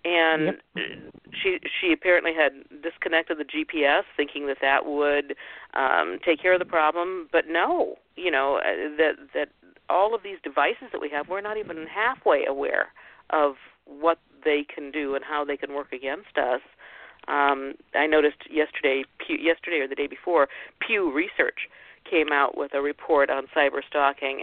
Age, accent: 50-69, American